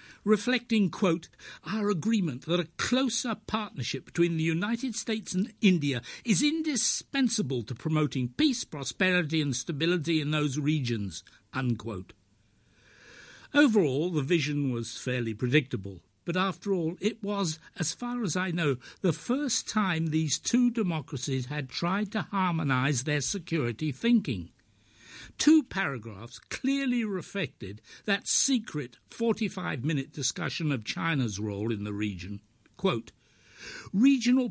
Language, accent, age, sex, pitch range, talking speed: English, British, 60-79, male, 135-205 Hz, 120 wpm